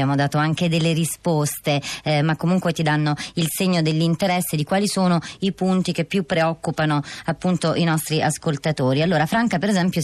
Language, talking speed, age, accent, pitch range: Italian, 175 wpm, 20-39, native, 165-190 Hz